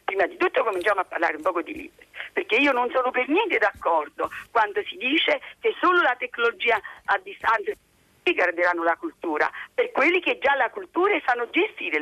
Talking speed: 190 wpm